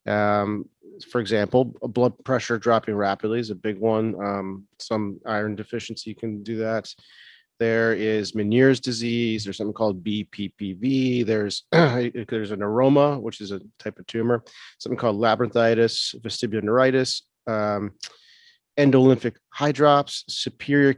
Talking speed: 130 wpm